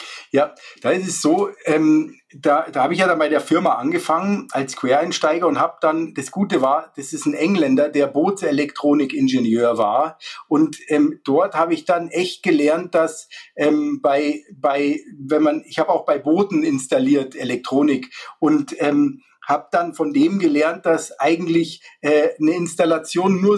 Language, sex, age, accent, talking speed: German, male, 50-69, German, 165 wpm